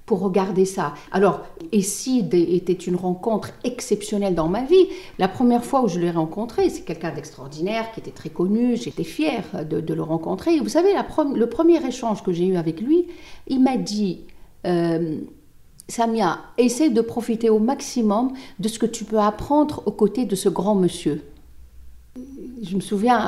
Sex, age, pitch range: female, 60-79, 175-240 Hz